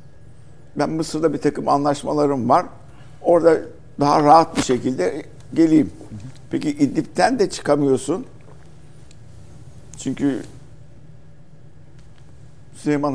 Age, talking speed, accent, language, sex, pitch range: 60-79, 80 wpm, native, Turkish, male, 125-145 Hz